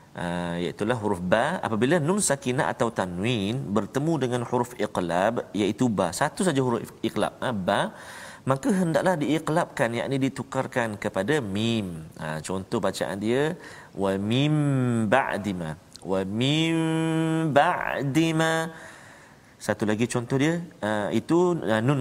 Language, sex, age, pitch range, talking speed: Malayalam, male, 40-59, 105-160 Hz, 125 wpm